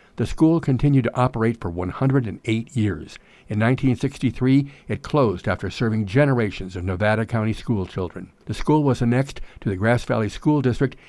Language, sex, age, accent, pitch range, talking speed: English, male, 60-79, American, 100-125 Hz, 160 wpm